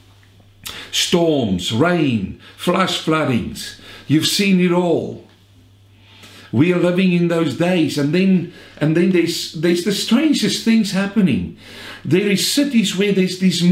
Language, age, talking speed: English, 60-79, 130 wpm